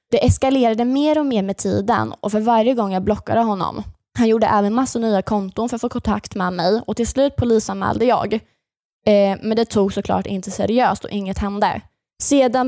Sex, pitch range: female, 190-230 Hz